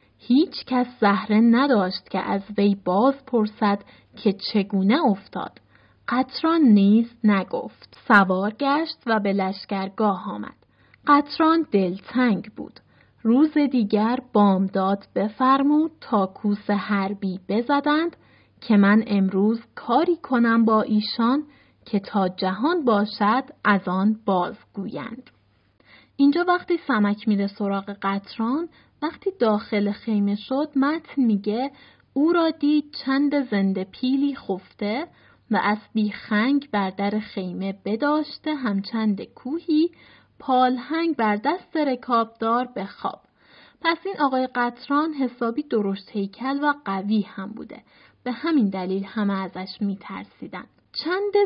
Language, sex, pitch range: Persian, female, 200-275 Hz